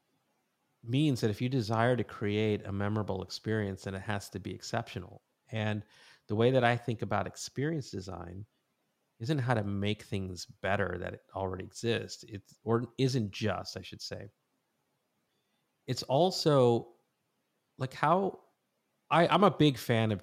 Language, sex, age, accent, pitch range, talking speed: English, male, 40-59, American, 100-120 Hz, 145 wpm